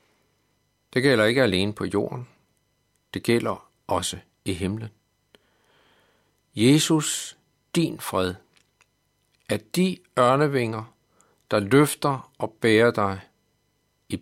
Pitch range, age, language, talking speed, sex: 100-140 Hz, 60-79, Danish, 95 wpm, male